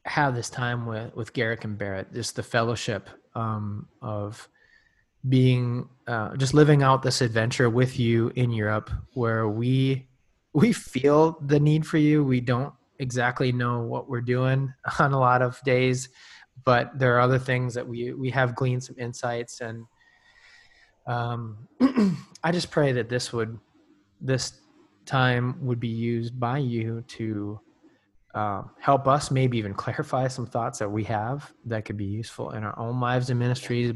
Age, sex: 20-39, male